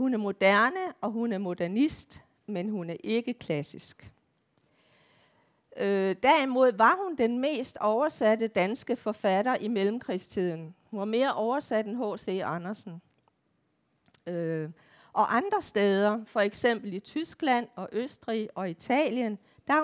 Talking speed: 125 wpm